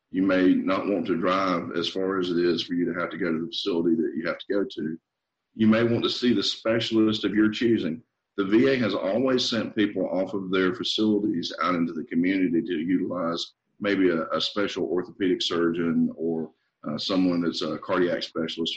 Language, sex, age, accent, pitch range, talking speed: English, male, 40-59, American, 85-115 Hz, 210 wpm